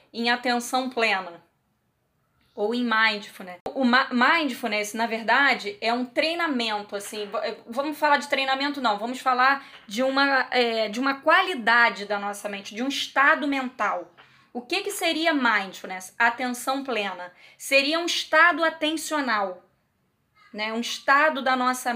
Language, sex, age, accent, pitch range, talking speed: Portuguese, female, 20-39, Brazilian, 225-280 Hz, 140 wpm